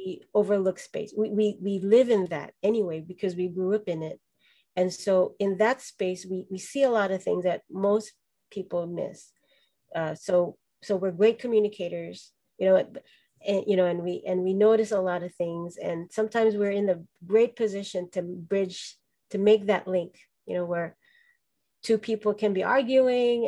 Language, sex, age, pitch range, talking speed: English, female, 30-49, 180-215 Hz, 170 wpm